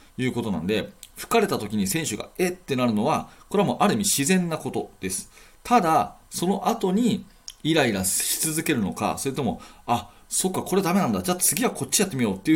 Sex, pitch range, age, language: male, 120-195 Hz, 40-59, Japanese